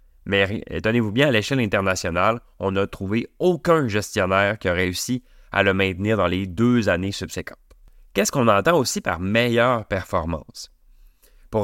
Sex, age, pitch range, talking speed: male, 30-49, 90-115 Hz, 155 wpm